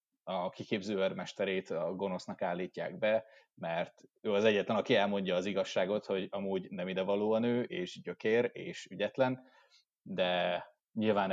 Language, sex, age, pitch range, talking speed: Hungarian, male, 30-49, 95-135 Hz, 130 wpm